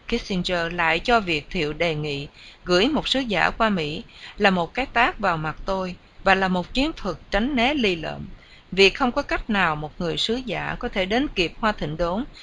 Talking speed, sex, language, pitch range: 215 wpm, female, English, 170-235 Hz